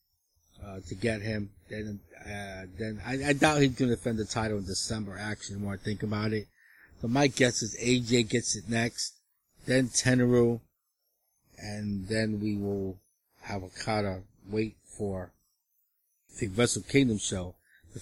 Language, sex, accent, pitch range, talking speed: English, male, American, 105-125 Hz, 160 wpm